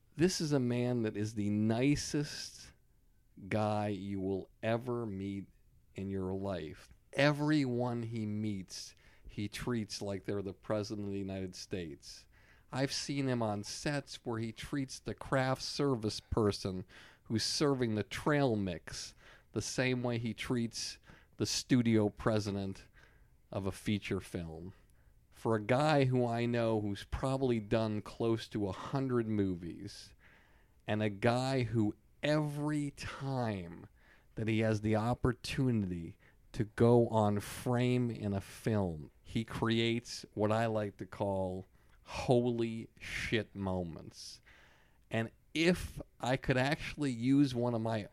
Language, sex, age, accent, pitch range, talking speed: English, male, 50-69, American, 100-125 Hz, 135 wpm